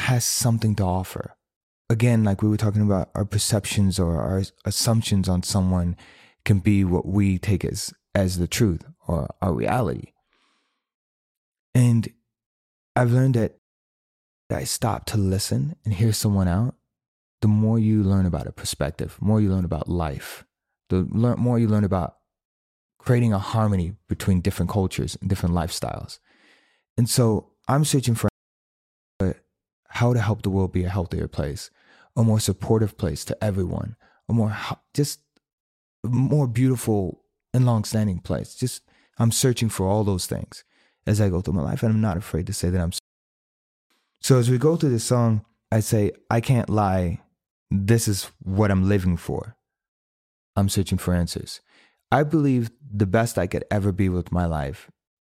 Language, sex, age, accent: English, male, 30-49, American